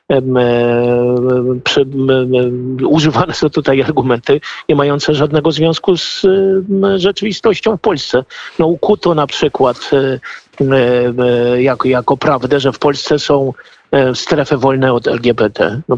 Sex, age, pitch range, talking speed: male, 50-69, 125-155 Hz, 105 wpm